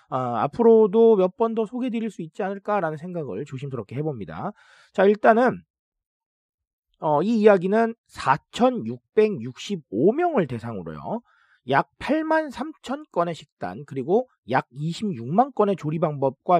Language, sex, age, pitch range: Korean, male, 40-59, 135-230 Hz